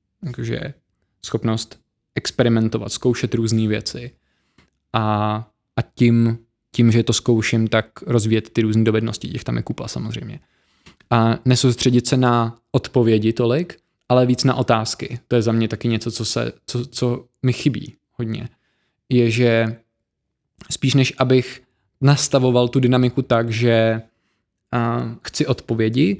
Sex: male